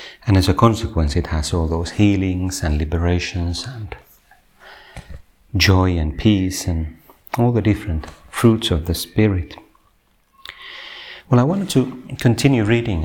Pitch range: 90-115 Hz